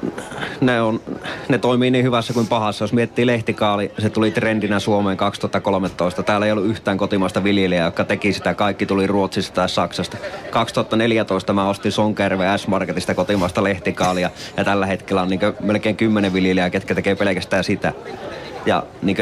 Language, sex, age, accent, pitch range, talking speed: Finnish, male, 20-39, native, 95-105 Hz, 160 wpm